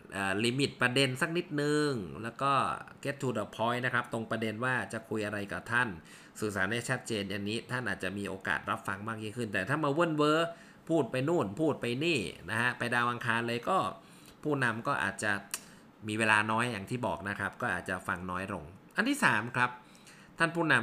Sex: male